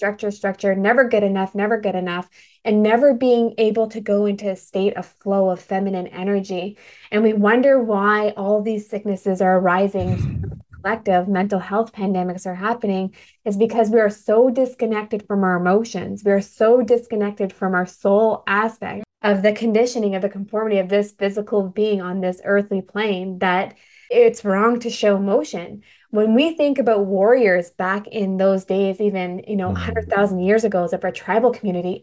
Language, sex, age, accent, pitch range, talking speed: English, female, 20-39, American, 195-225 Hz, 175 wpm